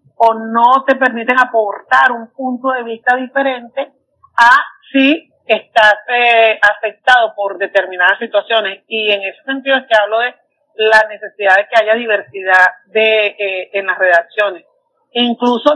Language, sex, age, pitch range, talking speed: Spanish, female, 40-59, 215-260 Hz, 145 wpm